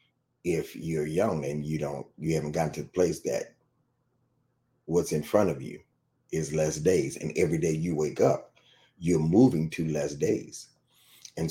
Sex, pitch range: male, 80-110 Hz